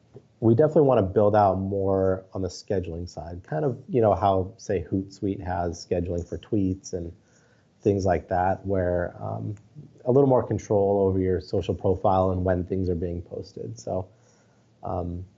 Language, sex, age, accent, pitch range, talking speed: English, male, 30-49, American, 95-115 Hz, 170 wpm